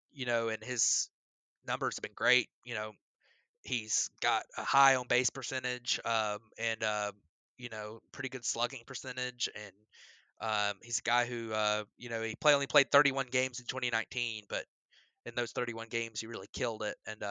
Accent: American